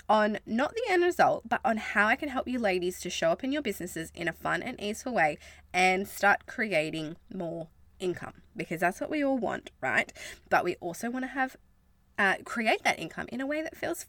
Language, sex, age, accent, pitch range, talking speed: English, female, 20-39, Australian, 180-280 Hz, 220 wpm